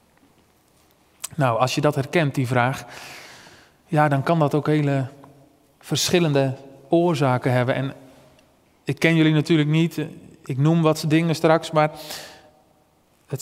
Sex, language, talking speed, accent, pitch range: male, Dutch, 130 wpm, Dutch, 155-210 Hz